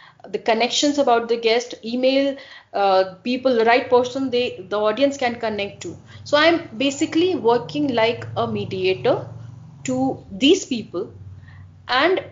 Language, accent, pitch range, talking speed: English, Indian, 220-285 Hz, 135 wpm